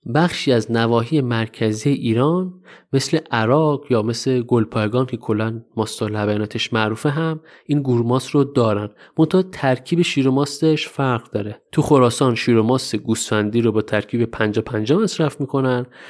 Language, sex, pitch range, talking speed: Persian, male, 115-150 Hz, 140 wpm